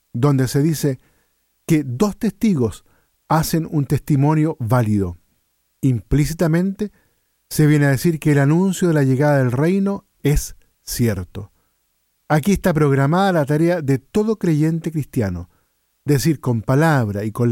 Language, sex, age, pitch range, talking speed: Spanish, male, 50-69, 125-175 Hz, 135 wpm